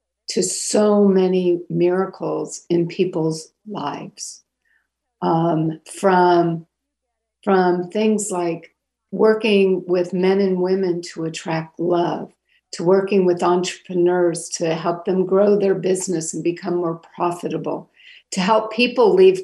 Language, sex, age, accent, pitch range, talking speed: English, female, 50-69, American, 175-205 Hz, 115 wpm